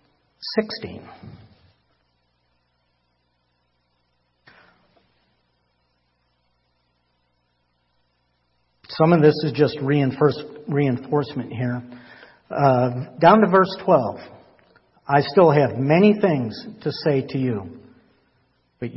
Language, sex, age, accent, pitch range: English, male, 60-79, American, 110-170 Hz